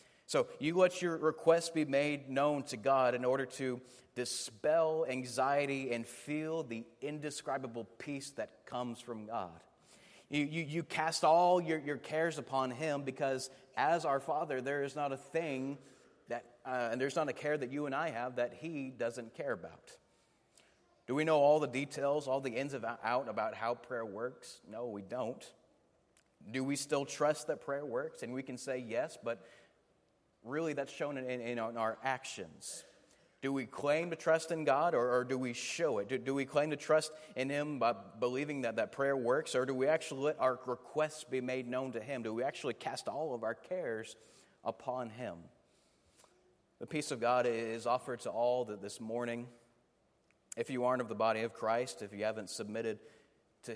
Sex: male